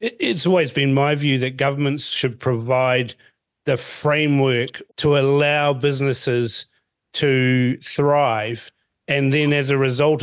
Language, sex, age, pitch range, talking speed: English, male, 50-69, 125-145 Hz, 125 wpm